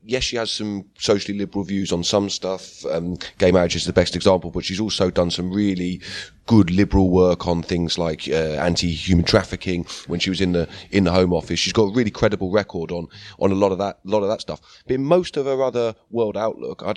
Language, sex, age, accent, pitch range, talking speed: English, male, 30-49, British, 90-115 Hz, 240 wpm